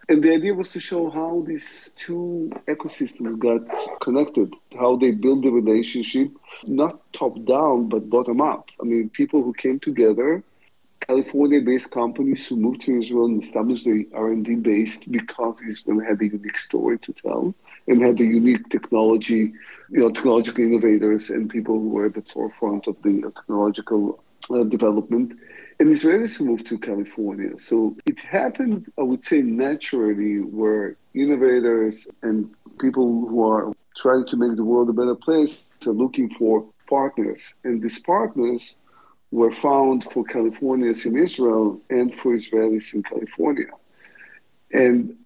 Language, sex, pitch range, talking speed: English, male, 110-145 Hz, 150 wpm